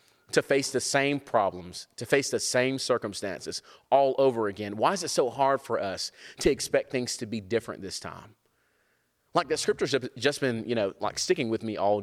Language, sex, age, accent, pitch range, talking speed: English, male, 30-49, American, 100-135 Hz, 205 wpm